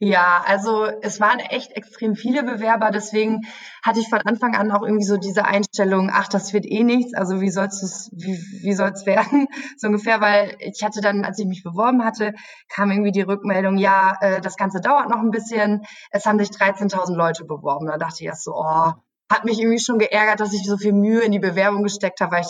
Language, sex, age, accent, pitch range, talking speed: German, female, 20-39, German, 185-220 Hz, 215 wpm